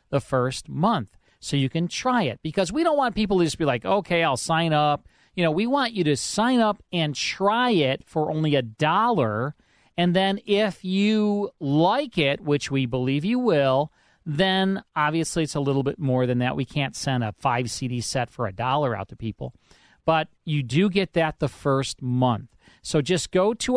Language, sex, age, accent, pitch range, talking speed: English, male, 40-59, American, 130-180 Hz, 200 wpm